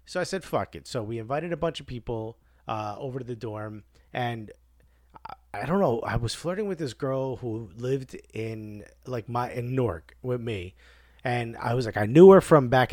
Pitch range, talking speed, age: 105-140 Hz, 215 wpm, 30-49